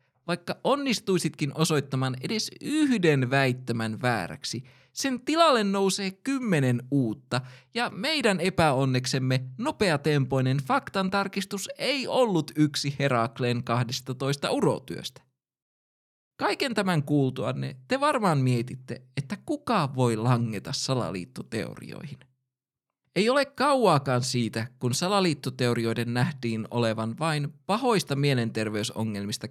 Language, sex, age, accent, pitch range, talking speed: Finnish, male, 20-39, native, 120-170 Hz, 90 wpm